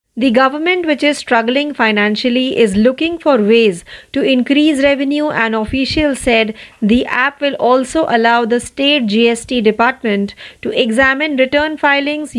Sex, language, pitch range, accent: female, Marathi, 225-280 Hz, native